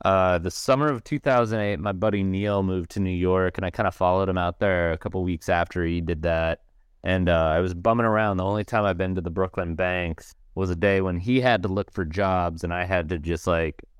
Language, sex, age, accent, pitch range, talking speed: English, male, 30-49, American, 85-105 Hz, 250 wpm